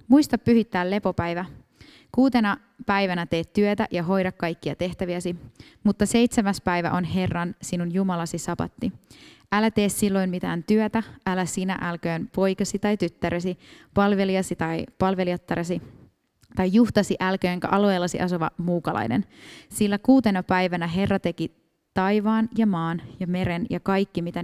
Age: 20-39